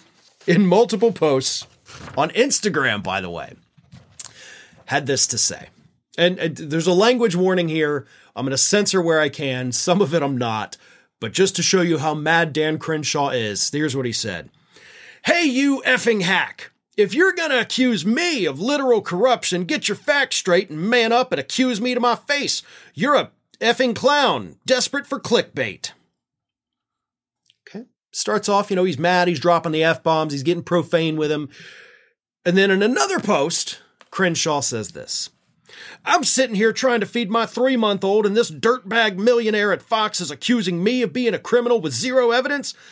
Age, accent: 30-49, American